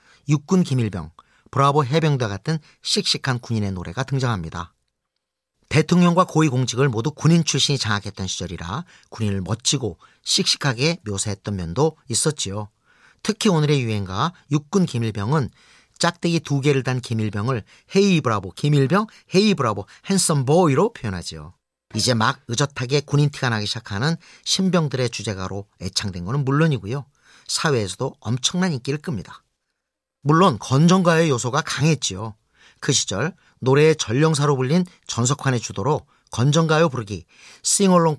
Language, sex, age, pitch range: Korean, male, 40-59, 110-165 Hz